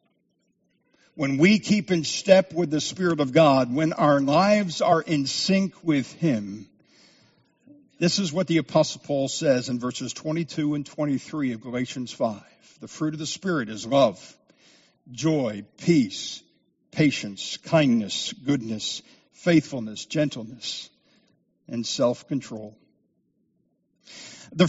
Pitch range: 140-185 Hz